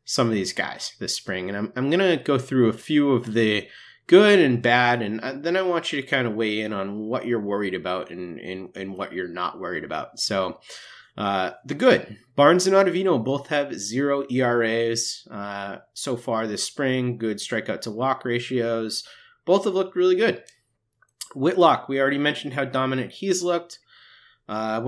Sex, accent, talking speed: male, American, 185 wpm